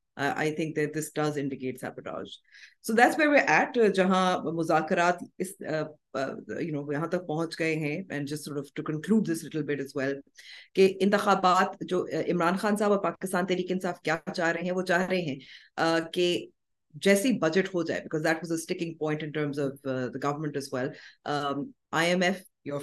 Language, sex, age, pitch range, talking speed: Urdu, female, 30-49, 145-180 Hz, 200 wpm